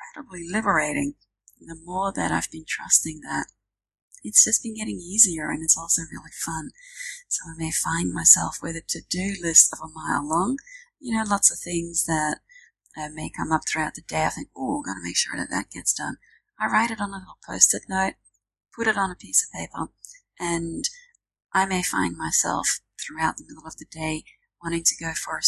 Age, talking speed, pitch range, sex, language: 30-49, 205 wpm, 160-225 Hz, female, English